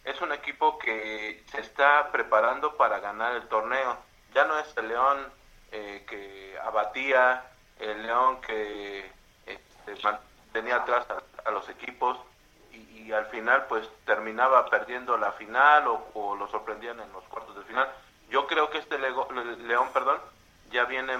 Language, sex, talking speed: Spanish, male, 155 wpm